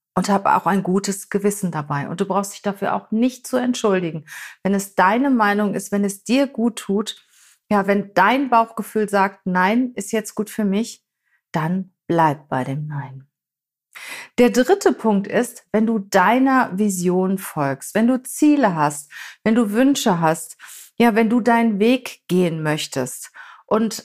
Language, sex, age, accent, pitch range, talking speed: German, female, 40-59, German, 185-230 Hz, 165 wpm